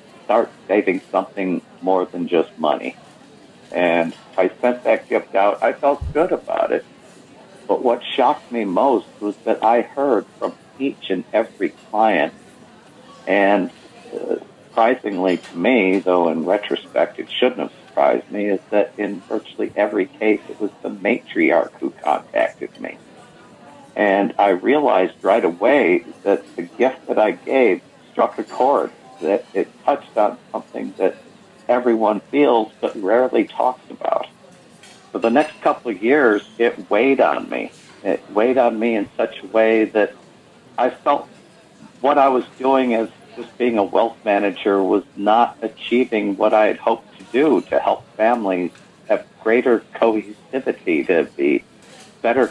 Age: 50-69